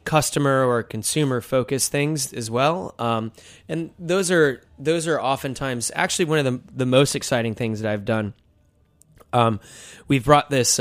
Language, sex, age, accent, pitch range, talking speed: English, male, 20-39, American, 110-135 Hz, 160 wpm